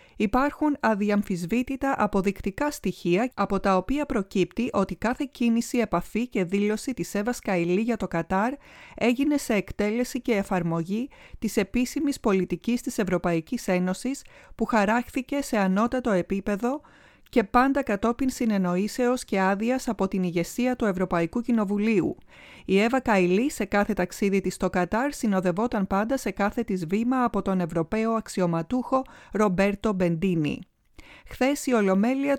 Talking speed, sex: 130 wpm, female